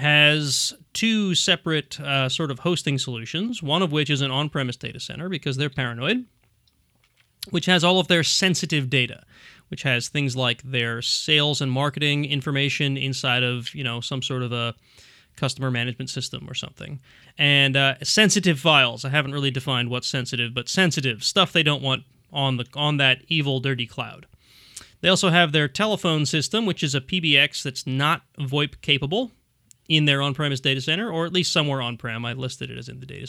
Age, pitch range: 30-49, 125-155 Hz